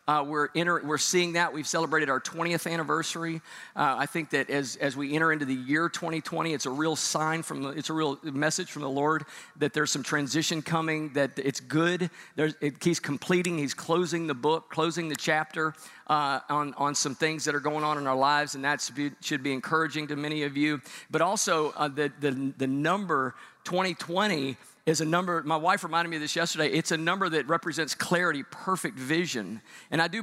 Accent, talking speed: American, 210 wpm